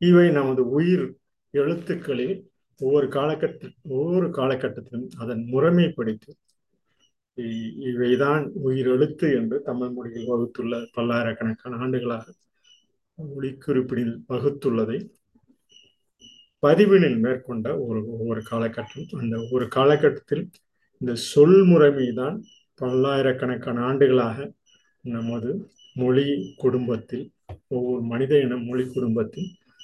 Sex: male